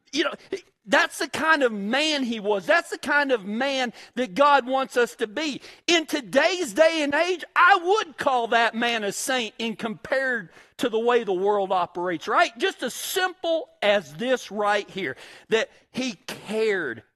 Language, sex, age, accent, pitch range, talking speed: English, male, 50-69, American, 170-250 Hz, 180 wpm